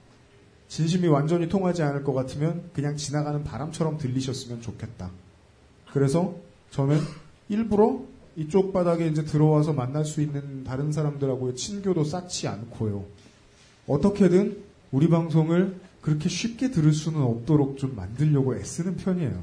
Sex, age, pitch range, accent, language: male, 40-59, 130-190 Hz, native, Korean